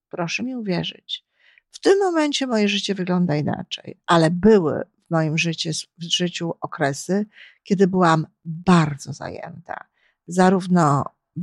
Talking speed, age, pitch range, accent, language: 115 wpm, 50-69, 170-195 Hz, native, Polish